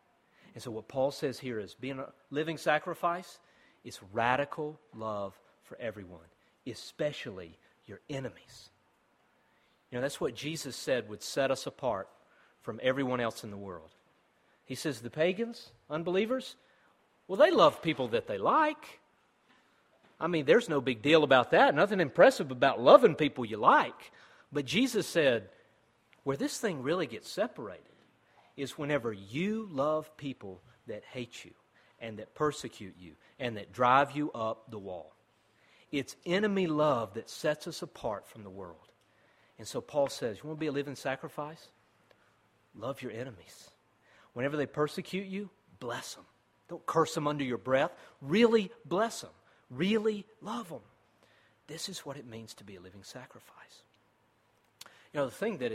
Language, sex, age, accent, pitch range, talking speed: English, male, 40-59, American, 120-175 Hz, 160 wpm